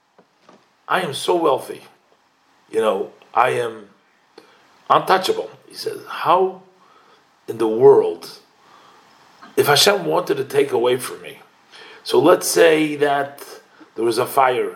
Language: English